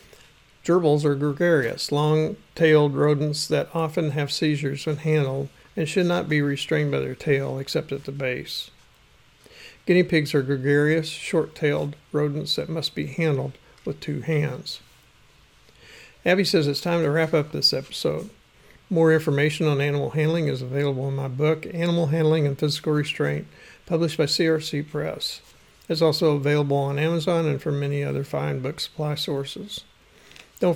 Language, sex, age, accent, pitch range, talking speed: English, male, 50-69, American, 145-165 Hz, 150 wpm